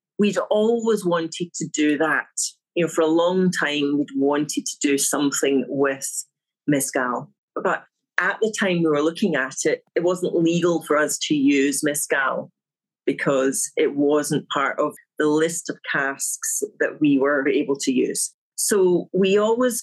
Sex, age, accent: female, 40-59, British